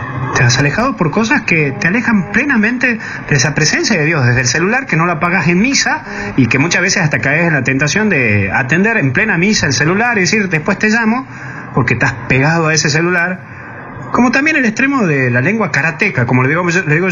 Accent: Argentinian